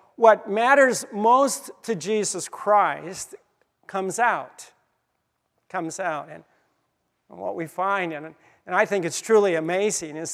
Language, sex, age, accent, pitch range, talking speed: English, male, 50-69, American, 170-220 Hz, 120 wpm